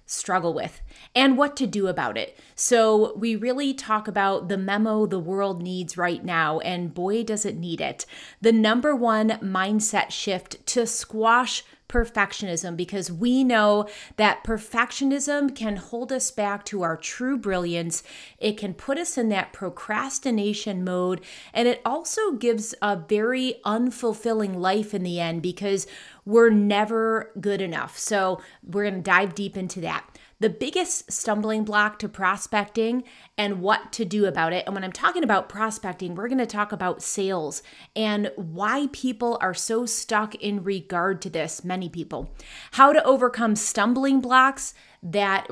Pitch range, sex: 190-235 Hz, female